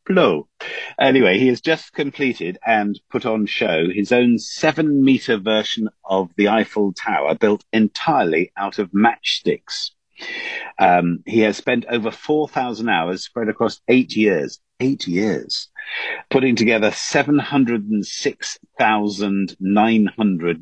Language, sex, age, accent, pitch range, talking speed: English, male, 50-69, British, 105-145 Hz, 115 wpm